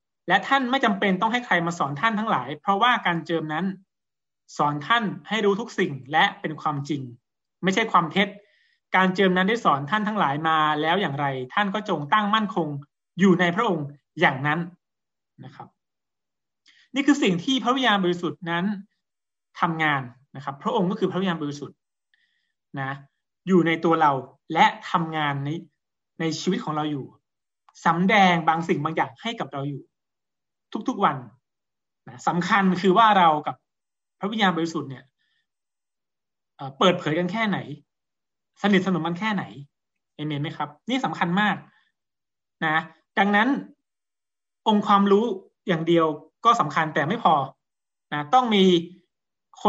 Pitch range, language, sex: 155-205 Hz, Thai, male